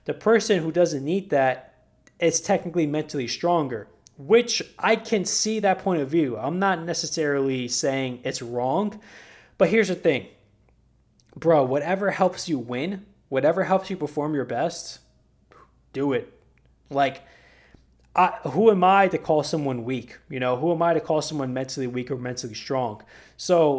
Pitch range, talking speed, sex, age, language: 135-190 Hz, 160 wpm, male, 20-39, English